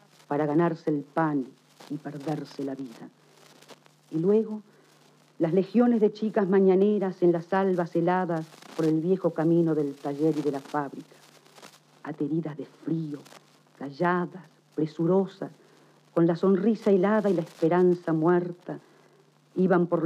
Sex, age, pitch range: female, 50-69, 160-190 Hz